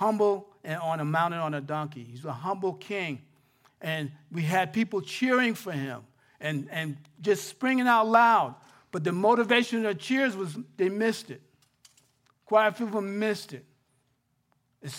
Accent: American